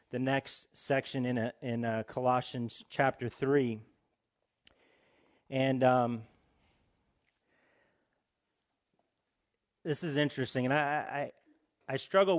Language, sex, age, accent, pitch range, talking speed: English, male, 40-59, American, 115-140 Hz, 95 wpm